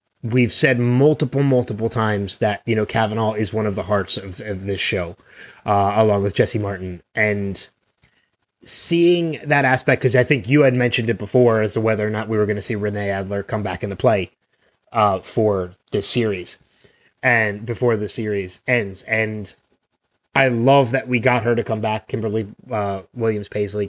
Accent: American